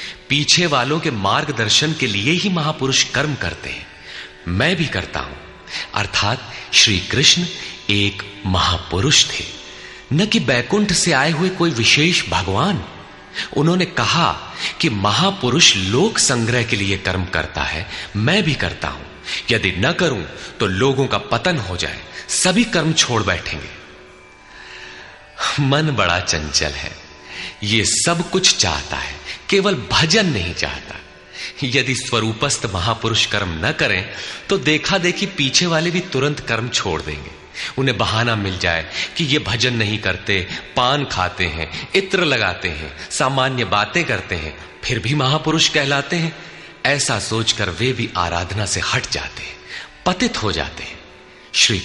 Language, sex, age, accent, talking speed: Hindi, male, 30-49, native, 145 wpm